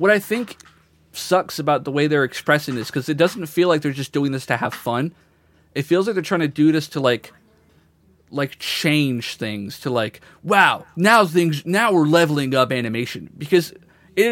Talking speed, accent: 195 wpm, American